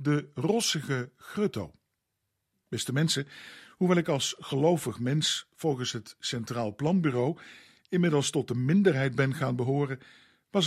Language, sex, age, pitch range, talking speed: Dutch, male, 50-69, 120-160 Hz, 125 wpm